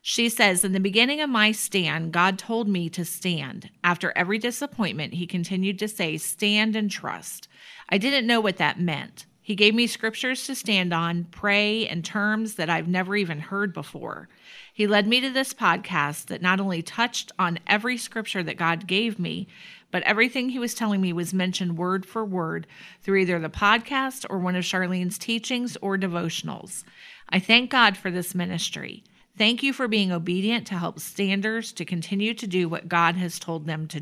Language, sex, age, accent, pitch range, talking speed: English, female, 40-59, American, 175-220 Hz, 190 wpm